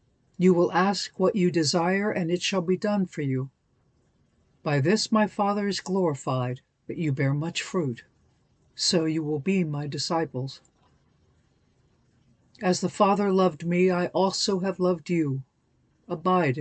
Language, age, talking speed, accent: English, 60-79, 150 wpm, American